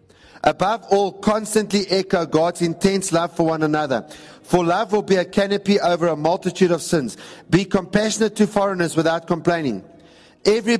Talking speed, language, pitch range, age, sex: 155 wpm, English, 170-205 Hz, 50-69, male